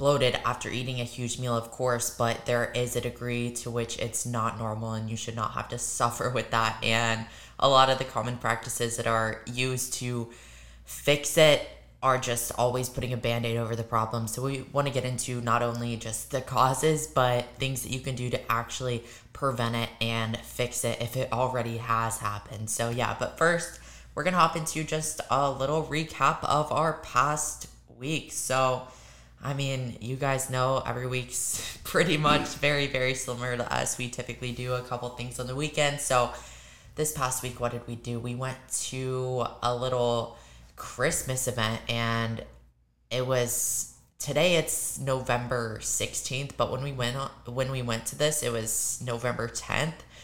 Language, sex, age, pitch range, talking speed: English, female, 20-39, 115-130 Hz, 185 wpm